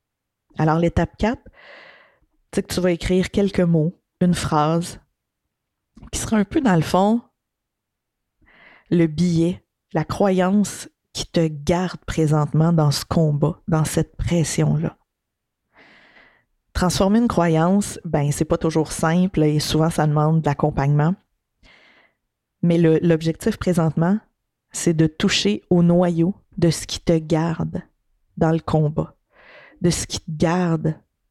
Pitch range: 155-180 Hz